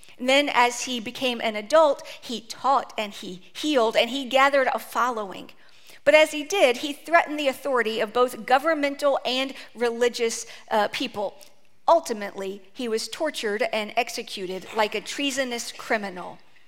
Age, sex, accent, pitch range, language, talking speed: 50-69, female, American, 225-290 Hz, English, 150 wpm